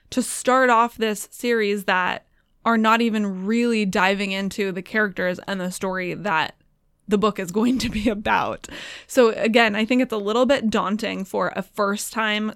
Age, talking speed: 20-39, 175 wpm